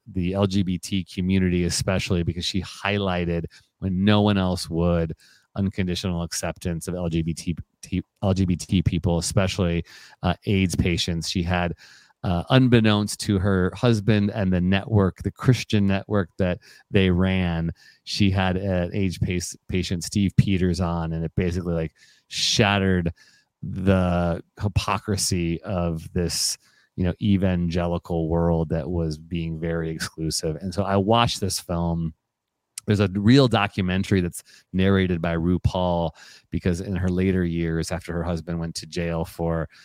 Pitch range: 85-100 Hz